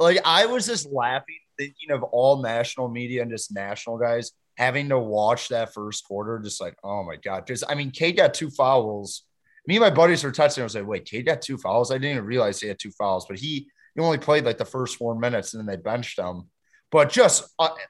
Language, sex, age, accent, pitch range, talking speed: English, male, 30-49, American, 115-155 Hz, 240 wpm